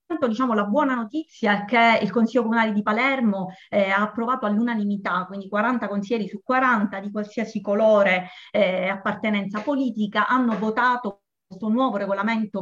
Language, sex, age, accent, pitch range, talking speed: Italian, female, 30-49, native, 200-240 Hz, 150 wpm